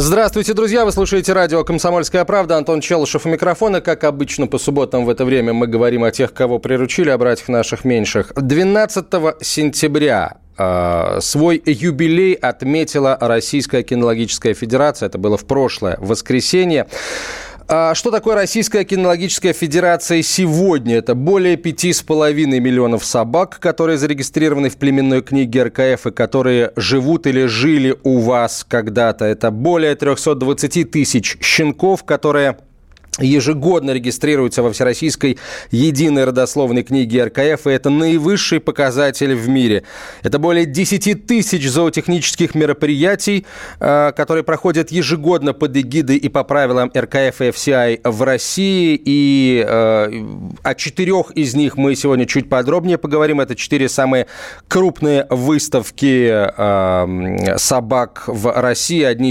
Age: 30-49